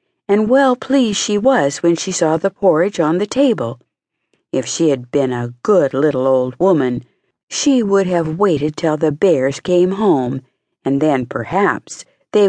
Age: 60-79